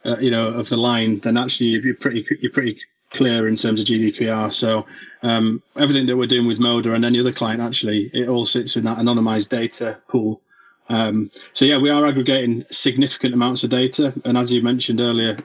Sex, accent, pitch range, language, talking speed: male, British, 115-130 Hz, English, 205 wpm